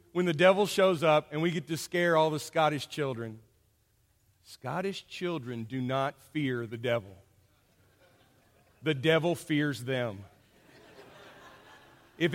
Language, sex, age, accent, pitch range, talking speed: English, male, 40-59, American, 155-240 Hz, 125 wpm